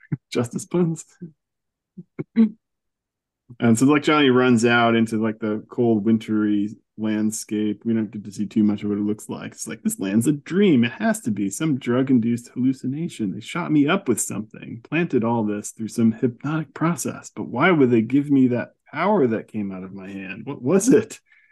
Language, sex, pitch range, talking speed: English, male, 105-130 Hz, 190 wpm